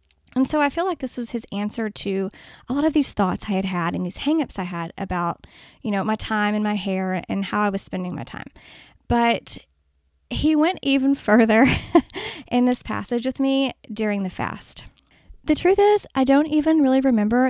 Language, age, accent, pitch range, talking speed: English, 20-39, American, 195-260 Hz, 200 wpm